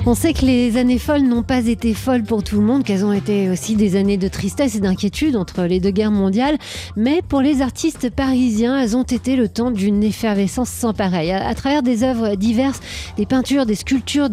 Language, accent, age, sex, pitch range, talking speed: French, French, 30-49, female, 195-250 Hz, 220 wpm